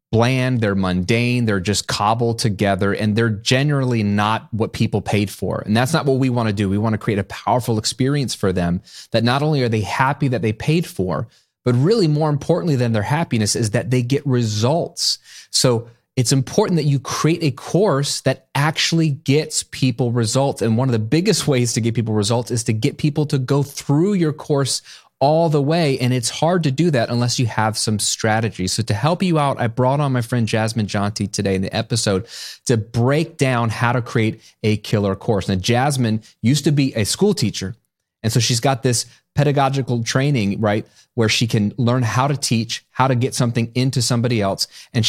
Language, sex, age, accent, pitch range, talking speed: English, male, 30-49, American, 110-140 Hz, 210 wpm